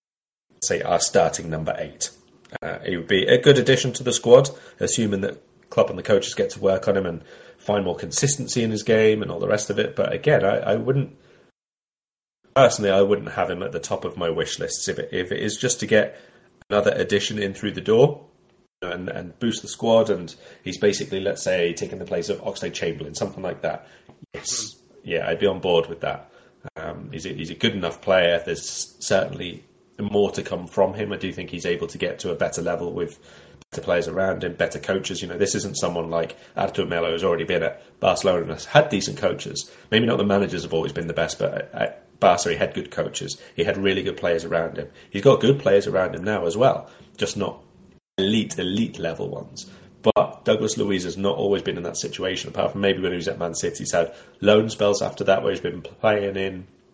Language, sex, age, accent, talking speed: English, male, 30-49, British, 225 wpm